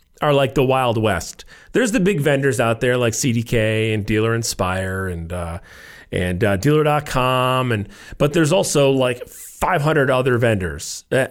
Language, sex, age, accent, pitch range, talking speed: English, male, 40-59, American, 115-155 Hz, 160 wpm